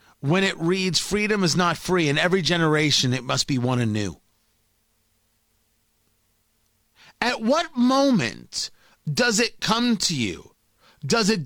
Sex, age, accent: male, 30-49, American